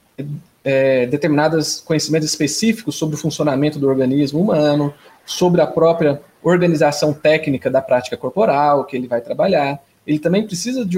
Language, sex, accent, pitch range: Portuguese, male, Brazilian, 140-175 Hz